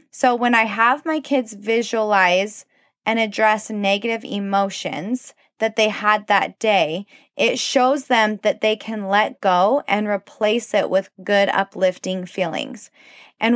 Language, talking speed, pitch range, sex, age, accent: English, 140 wpm, 200-250 Hz, female, 20-39, American